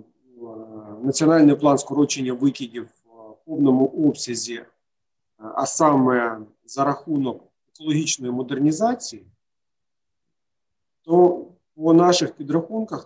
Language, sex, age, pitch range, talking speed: Ukrainian, male, 40-59, 125-165 Hz, 80 wpm